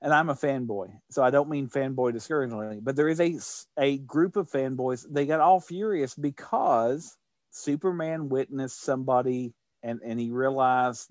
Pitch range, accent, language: 115-150 Hz, American, English